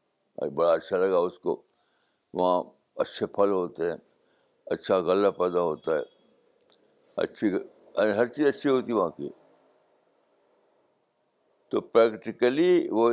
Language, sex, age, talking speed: Urdu, male, 60-79, 125 wpm